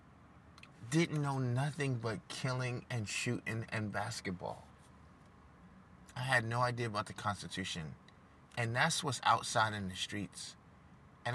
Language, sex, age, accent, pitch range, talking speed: English, male, 30-49, American, 95-130 Hz, 125 wpm